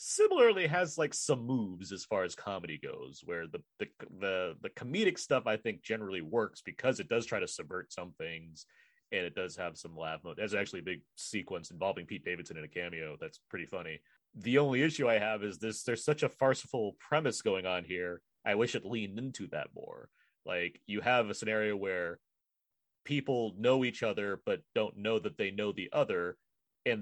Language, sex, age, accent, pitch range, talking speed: English, male, 30-49, American, 90-130 Hz, 200 wpm